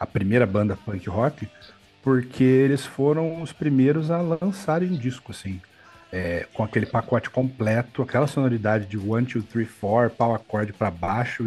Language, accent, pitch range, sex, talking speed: Portuguese, Brazilian, 105-140 Hz, male, 160 wpm